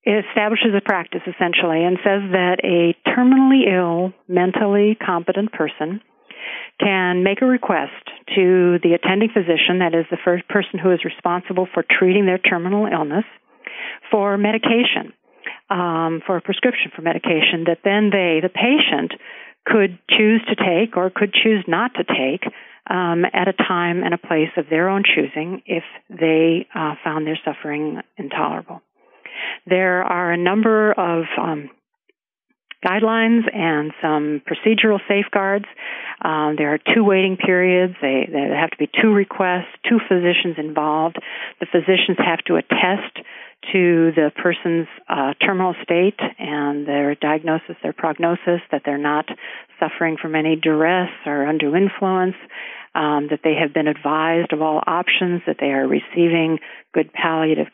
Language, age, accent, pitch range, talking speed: English, 50-69, American, 160-200 Hz, 150 wpm